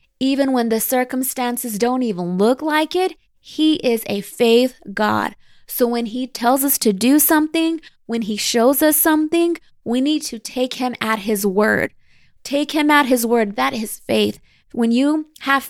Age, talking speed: 20-39, 175 wpm